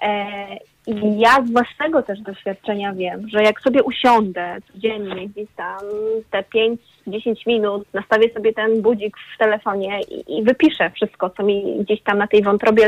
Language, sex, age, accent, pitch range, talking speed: Polish, female, 30-49, native, 215-255 Hz, 160 wpm